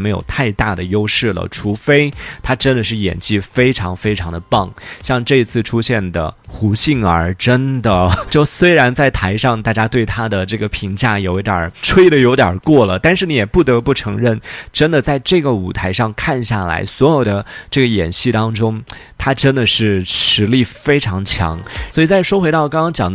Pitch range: 95-130 Hz